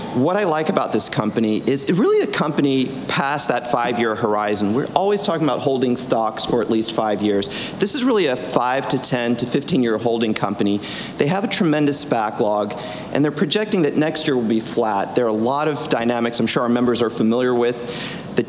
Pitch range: 115-150 Hz